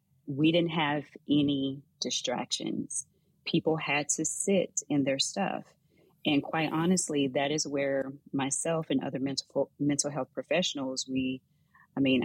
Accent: American